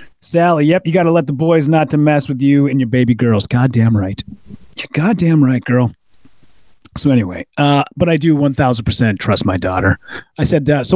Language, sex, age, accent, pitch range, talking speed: English, male, 30-49, American, 110-145 Hz, 205 wpm